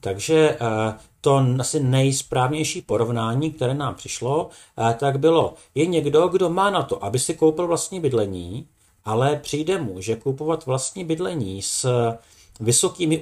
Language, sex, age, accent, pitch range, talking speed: Czech, male, 50-69, native, 115-160 Hz, 135 wpm